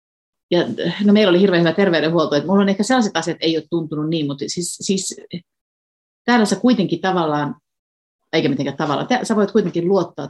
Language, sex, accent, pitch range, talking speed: Finnish, female, native, 140-185 Hz, 175 wpm